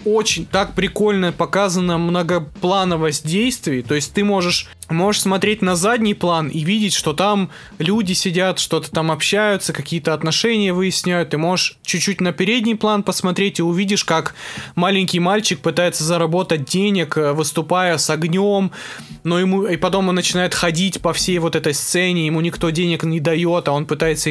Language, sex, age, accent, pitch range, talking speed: Russian, male, 20-39, native, 165-195 Hz, 160 wpm